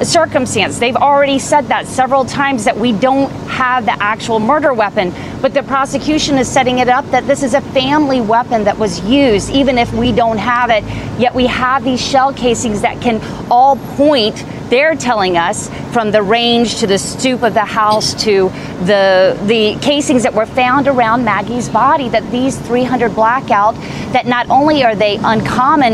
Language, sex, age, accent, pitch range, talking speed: English, female, 30-49, American, 210-255 Hz, 185 wpm